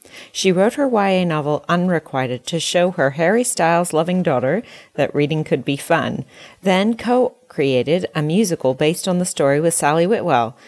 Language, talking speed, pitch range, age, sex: English, 155 wpm, 150-200 Hz, 40-59, female